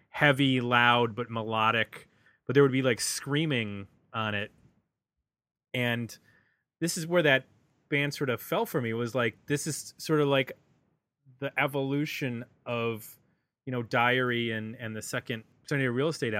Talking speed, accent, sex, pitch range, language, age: 160 wpm, American, male, 115-140 Hz, English, 30-49